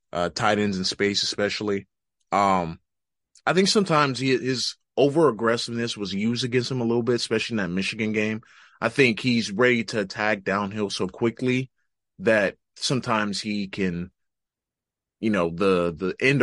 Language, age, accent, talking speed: English, 20-39, American, 155 wpm